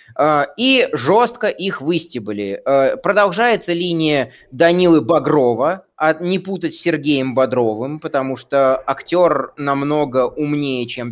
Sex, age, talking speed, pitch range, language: male, 20-39, 105 wpm, 130-175 Hz, Russian